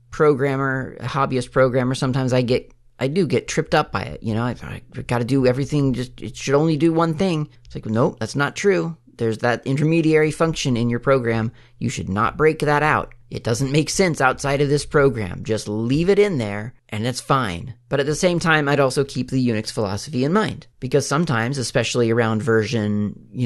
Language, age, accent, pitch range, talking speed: English, 30-49, American, 115-145 Hz, 215 wpm